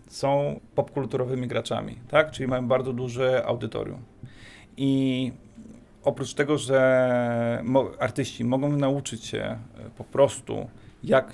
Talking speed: 110 wpm